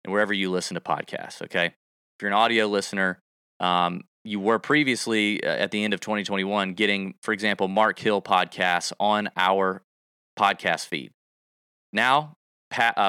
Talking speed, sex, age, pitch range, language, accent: 155 wpm, male, 30-49, 100-115 Hz, English, American